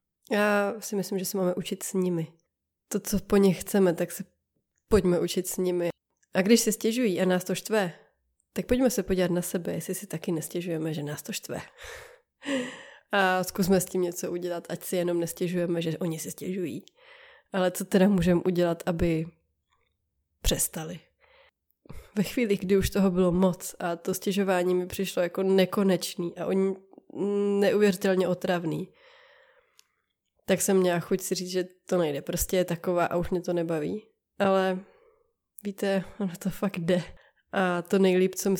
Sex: female